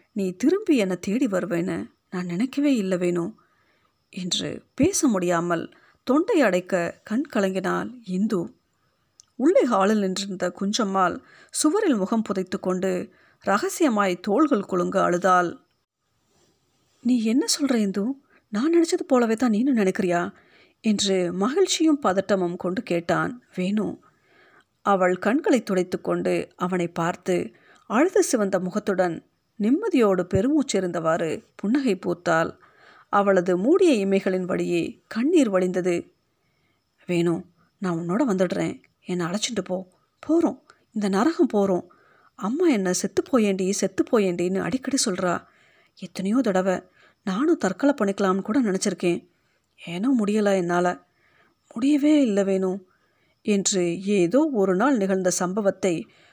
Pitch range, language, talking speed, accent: 180-260 Hz, Tamil, 105 wpm, native